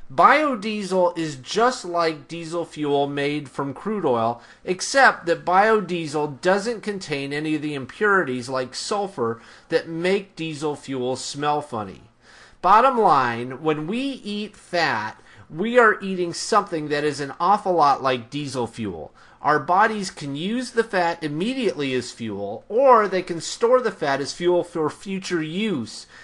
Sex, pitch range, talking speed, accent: male, 140-205 Hz, 150 wpm, American